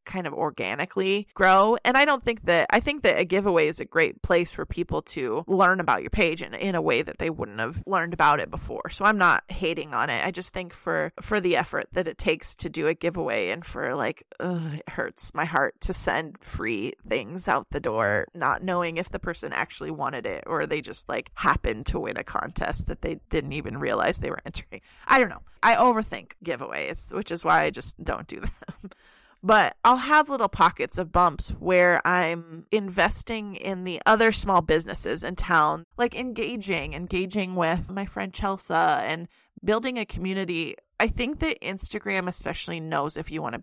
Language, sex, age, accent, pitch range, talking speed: English, female, 20-39, American, 175-215 Hz, 205 wpm